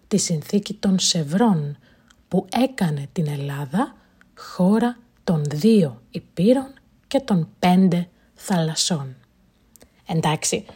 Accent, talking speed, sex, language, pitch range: native, 95 wpm, female, Greek, 175-240 Hz